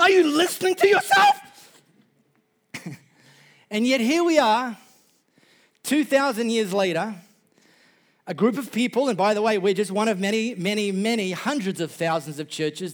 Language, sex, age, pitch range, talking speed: English, male, 40-59, 150-220 Hz, 155 wpm